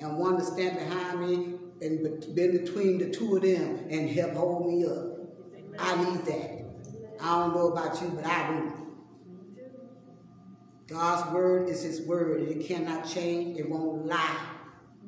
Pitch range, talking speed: 155-180 Hz, 165 wpm